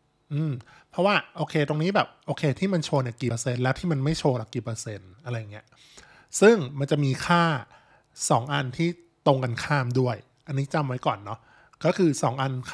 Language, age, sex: Thai, 20-39, male